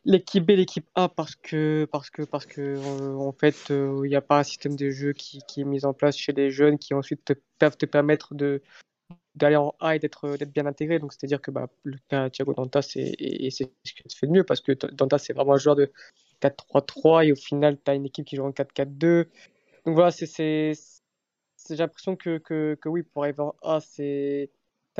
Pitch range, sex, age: 140-155 Hz, female, 20-39